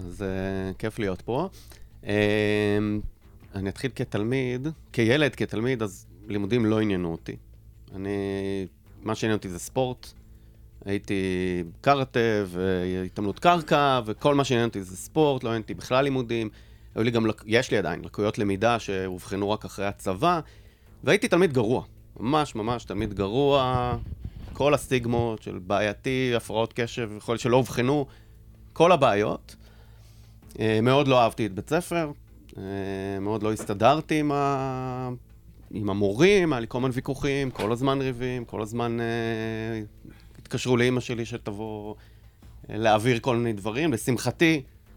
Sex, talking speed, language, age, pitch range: male, 135 wpm, Hebrew, 30-49, 100-125 Hz